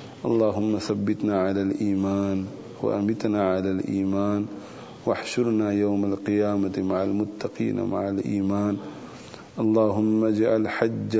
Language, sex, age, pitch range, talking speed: English, male, 40-59, 100-110 Hz, 90 wpm